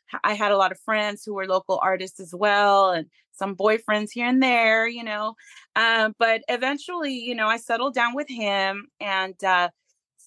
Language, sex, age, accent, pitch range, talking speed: English, female, 30-49, American, 185-220 Hz, 185 wpm